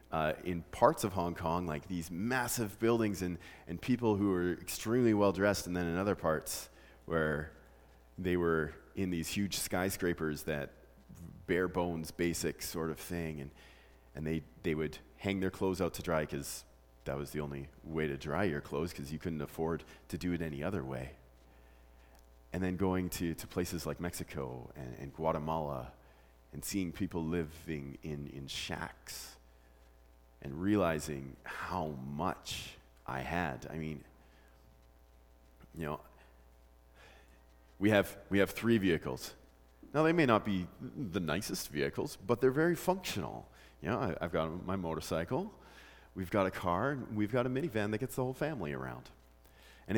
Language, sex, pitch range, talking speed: English, male, 65-95 Hz, 160 wpm